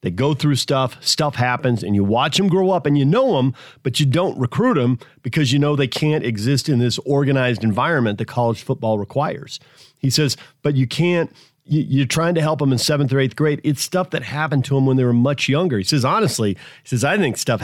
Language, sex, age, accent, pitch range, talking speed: English, male, 40-59, American, 120-150 Hz, 235 wpm